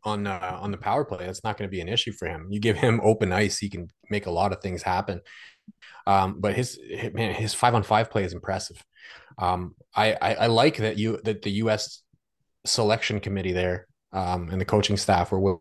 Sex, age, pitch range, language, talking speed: male, 30-49, 95-110 Hz, English, 225 wpm